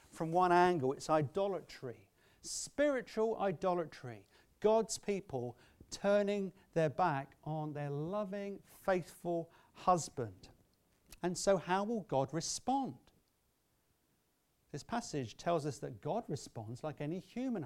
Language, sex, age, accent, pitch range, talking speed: English, male, 40-59, British, 135-215 Hz, 110 wpm